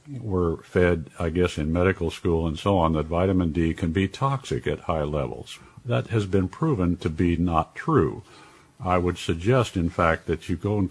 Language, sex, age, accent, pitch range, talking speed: English, male, 50-69, American, 80-110 Hz, 200 wpm